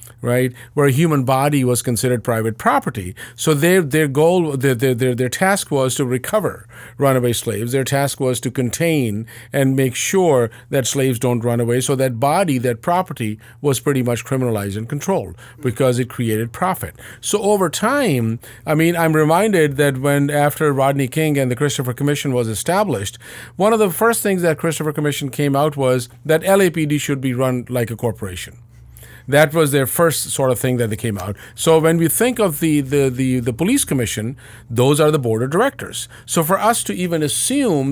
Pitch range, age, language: 120-155 Hz, 50-69, English